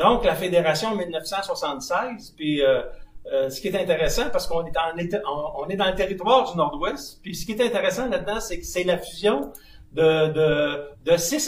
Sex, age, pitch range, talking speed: male, 60-79, 160-225 Hz, 200 wpm